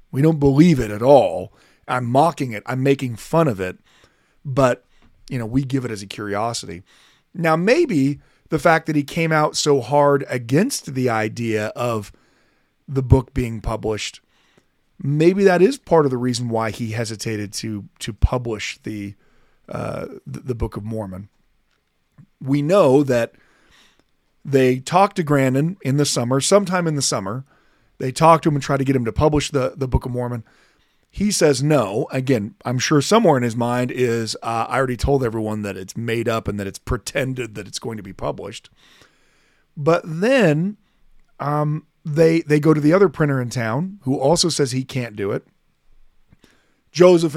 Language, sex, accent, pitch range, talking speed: English, male, American, 115-150 Hz, 175 wpm